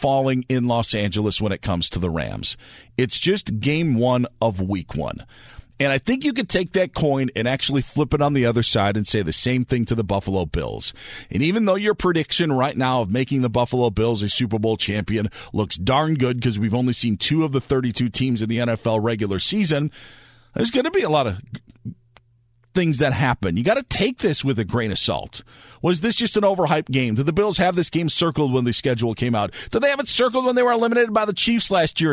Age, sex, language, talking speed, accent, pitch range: 40-59, male, English, 235 wpm, American, 120-155 Hz